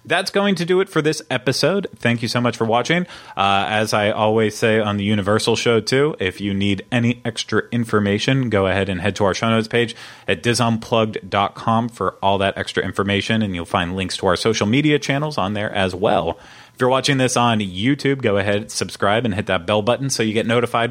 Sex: male